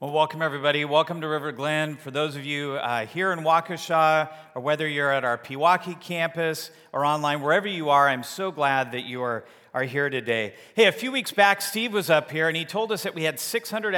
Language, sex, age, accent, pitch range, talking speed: English, male, 40-59, American, 140-180 Hz, 230 wpm